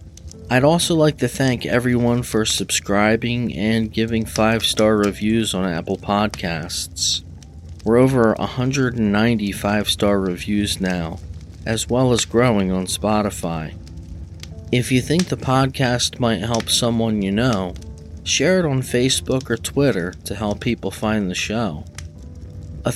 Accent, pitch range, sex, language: American, 90-115 Hz, male, English